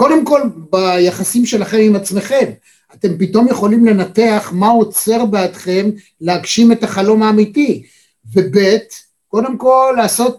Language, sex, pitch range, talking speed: Hebrew, male, 185-220 Hz, 120 wpm